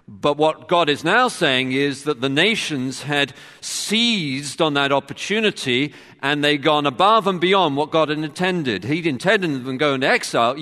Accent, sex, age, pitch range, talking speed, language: British, male, 50-69, 105-160 Hz, 185 wpm, English